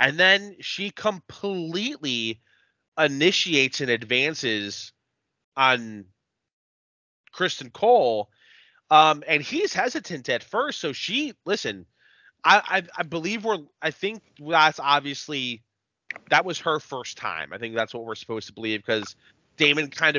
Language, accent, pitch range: English, American, 110-155 Hz